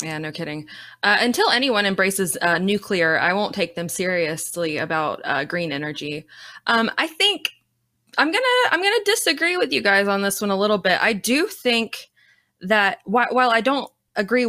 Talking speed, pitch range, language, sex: 180 wpm, 180-230 Hz, English, female